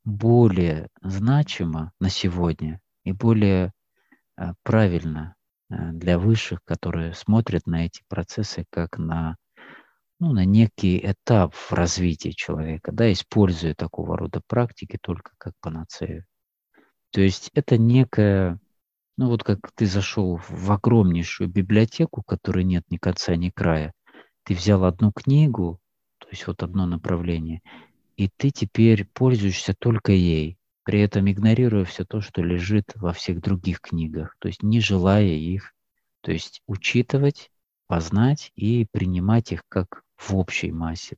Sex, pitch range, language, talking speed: male, 85-110 Hz, Russian, 130 wpm